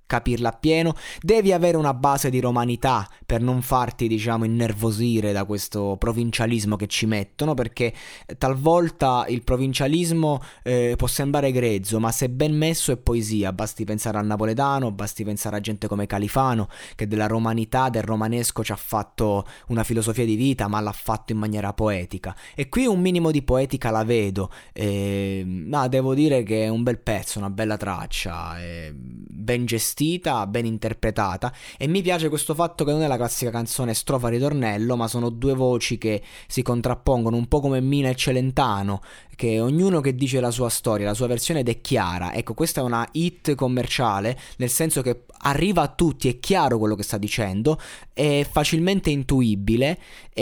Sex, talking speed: male, 175 wpm